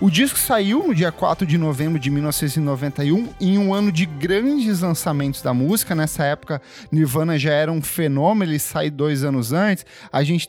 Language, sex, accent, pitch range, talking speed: Portuguese, male, Brazilian, 155-205 Hz, 185 wpm